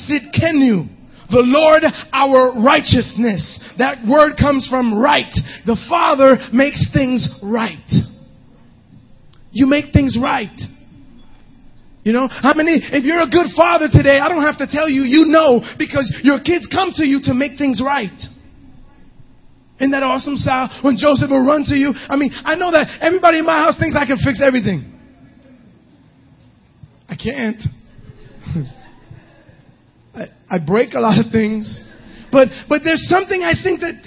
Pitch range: 215-300 Hz